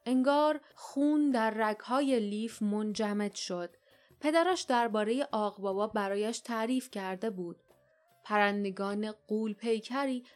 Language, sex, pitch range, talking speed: Persian, female, 205-245 Hz, 100 wpm